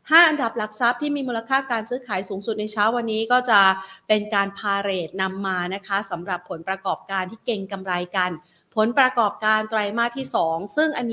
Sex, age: female, 30-49